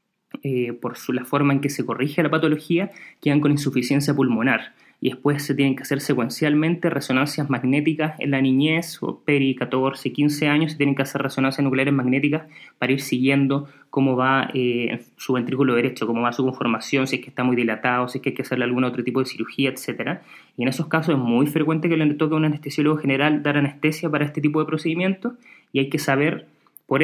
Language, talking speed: Spanish, 210 wpm